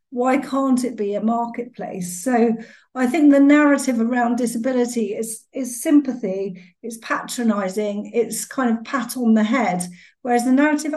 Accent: British